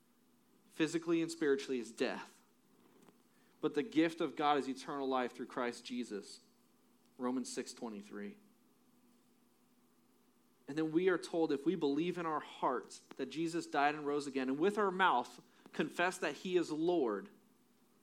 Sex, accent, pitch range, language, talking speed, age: male, American, 120-160 Hz, English, 145 wpm, 30-49